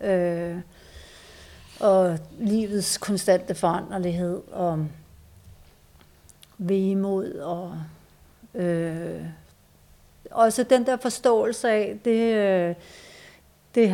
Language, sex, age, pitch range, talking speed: Danish, female, 60-79, 175-210 Hz, 75 wpm